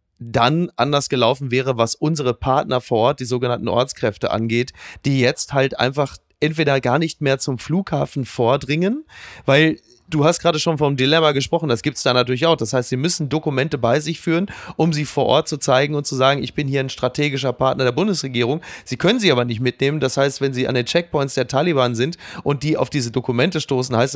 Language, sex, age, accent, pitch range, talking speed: German, male, 30-49, German, 120-150 Hz, 215 wpm